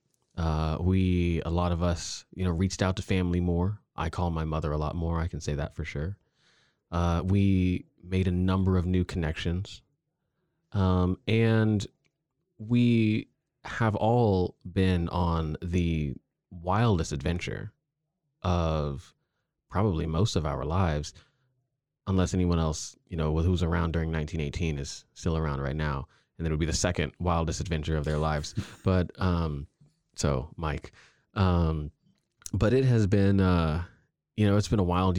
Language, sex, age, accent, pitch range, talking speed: English, male, 20-39, American, 80-100 Hz, 155 wpm